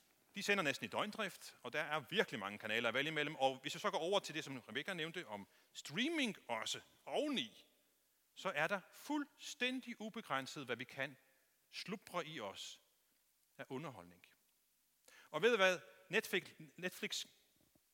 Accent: native